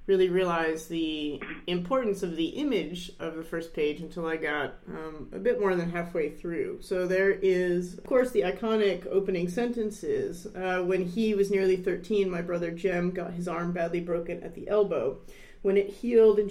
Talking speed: 185 wpm